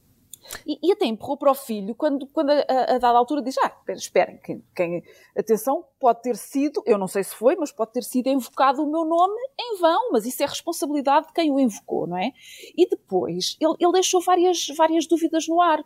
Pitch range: 215-295 Hz